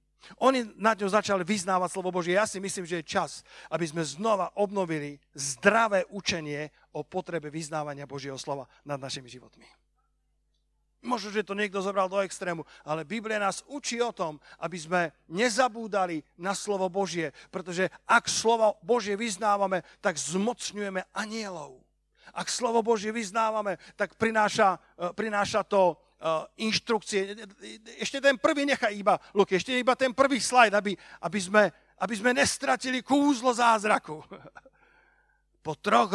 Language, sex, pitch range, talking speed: Slovak, male, 155-210 Hz, 140 wpm